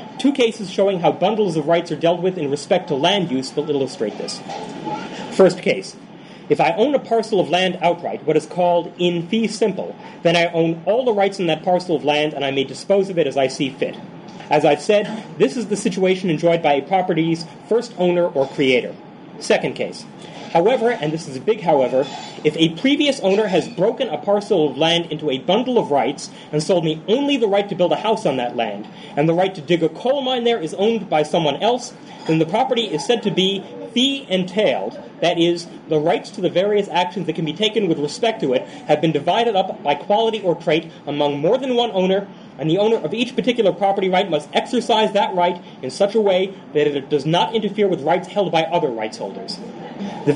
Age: 30-49